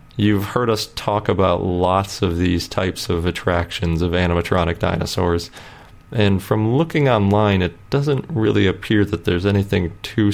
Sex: male